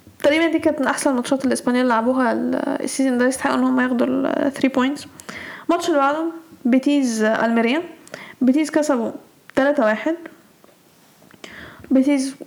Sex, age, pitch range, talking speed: female, 10-29, 260-310 Hz, 125 wpm